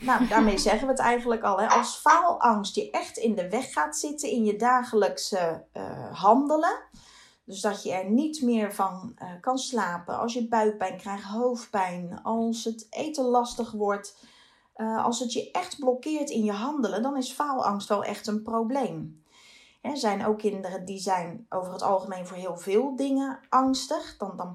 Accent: Dutch